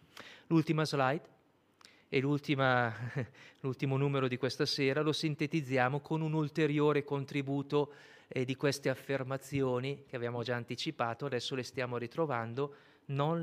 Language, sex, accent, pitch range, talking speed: Italian, male, native, 125-145 Hz, 120 wpm